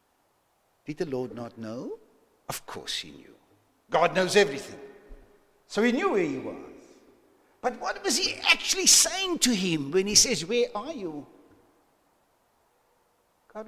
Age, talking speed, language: 60-79, 145 wpm, English